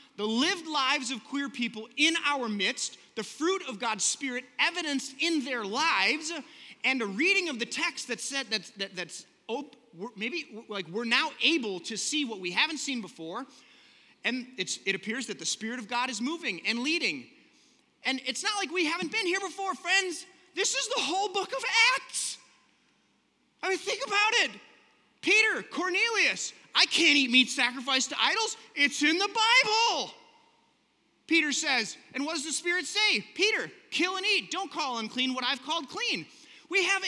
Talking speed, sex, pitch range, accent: 180 wpm, male, 240-355 Hz, American